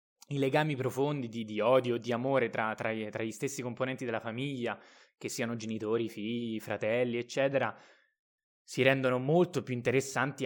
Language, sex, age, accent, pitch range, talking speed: Italian, male, 20-39, native, 105-130 Hz, 150 wpm